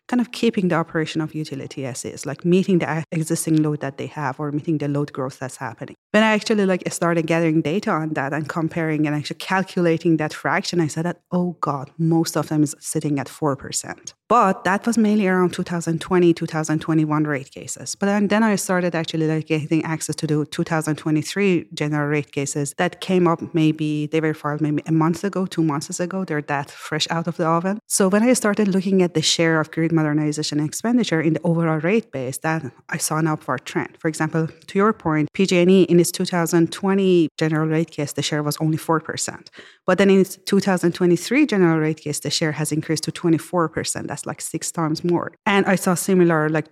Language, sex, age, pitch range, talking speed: English, female, 30-49, 155-180 Hz, 205 wpm